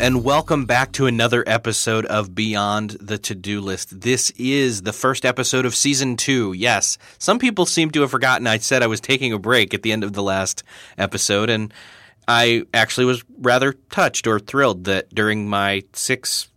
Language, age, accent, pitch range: English, 30-49, American, 105-130 Hz